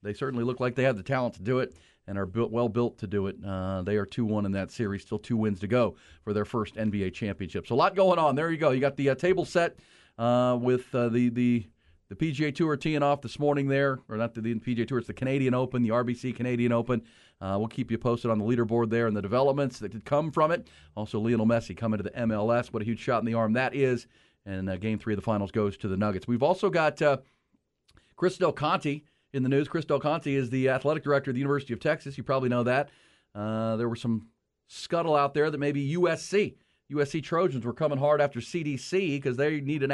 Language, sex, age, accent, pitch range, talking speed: English, male, 40-59, American, 115-145 Hz, 250 wpm